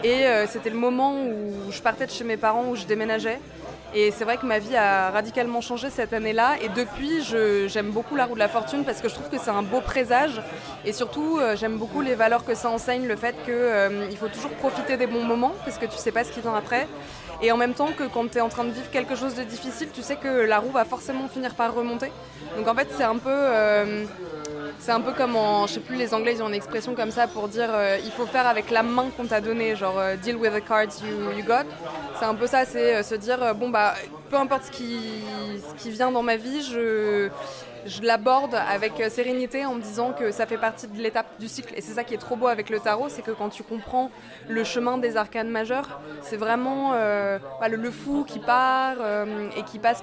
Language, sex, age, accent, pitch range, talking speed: French, female, 20-39, French, 215-250 Hz, 255 wpm